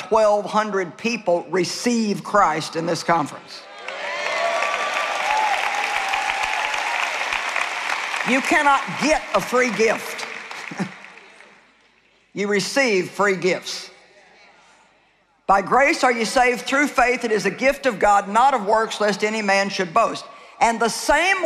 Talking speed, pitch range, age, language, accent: 115 wpm, 200-260 Hz, 50-69, English, American